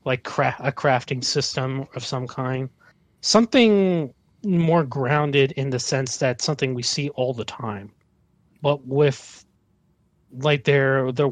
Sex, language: male, English